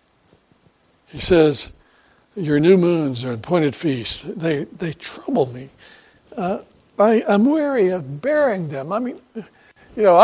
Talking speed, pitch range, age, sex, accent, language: 130 wpm, 145-175 Hz, 60-79, male, American, English